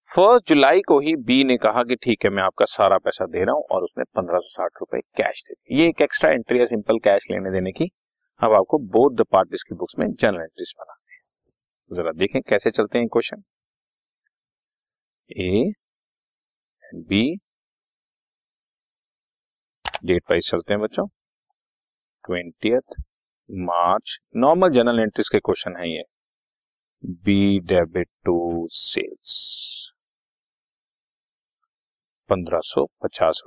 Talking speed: 115 wpm